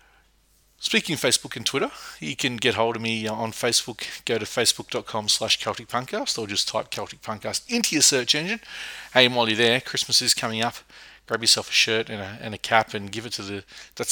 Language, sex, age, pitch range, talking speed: English, male, 30-49, 100-120 Hz, 210 wpm